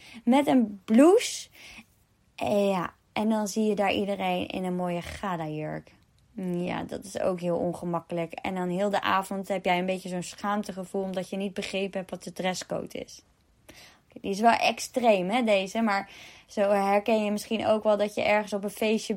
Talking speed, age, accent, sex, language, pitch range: 185 wpm, 20-39, Dutch, female, Dutch, 185-230 Hz